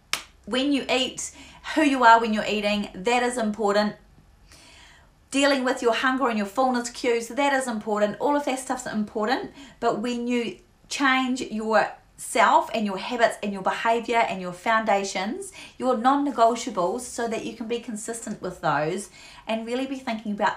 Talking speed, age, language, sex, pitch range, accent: 165 wpm, 30-49, English, female, 170-230 Hz, Australian